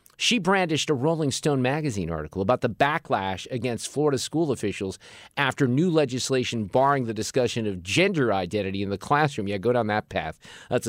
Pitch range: 100-145 Hz